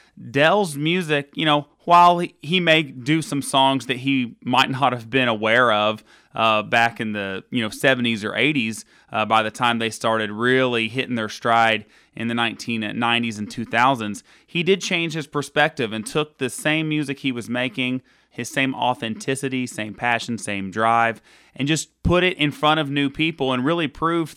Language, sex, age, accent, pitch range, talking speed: English, male, 30-49, American, 115-150 Hz, 180 wpm